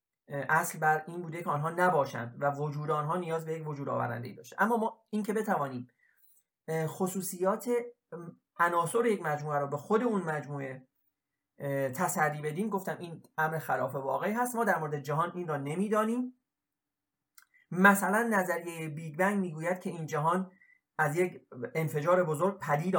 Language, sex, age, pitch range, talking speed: Persian, male, 30-49, 145-195 Hz, 150 wpm